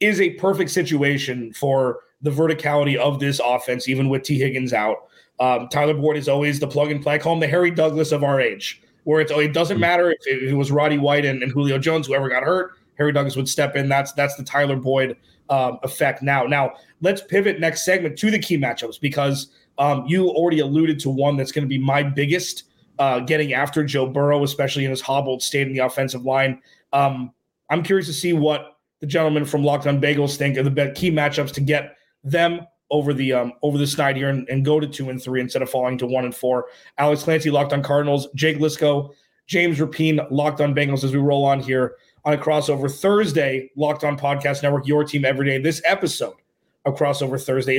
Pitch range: 135-155 Hz